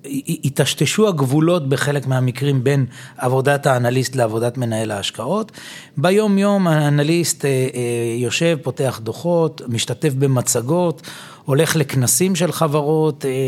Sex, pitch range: male, 130-160 Hz